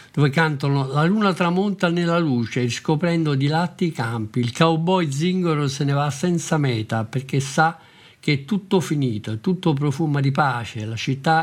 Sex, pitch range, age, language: male, 130-160 Hz, 50-69, Italian